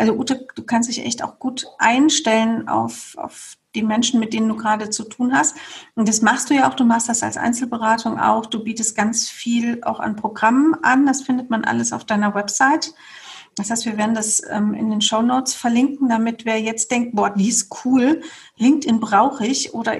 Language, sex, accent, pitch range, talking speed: German, female, German, 220-260 Hz, 205 wpm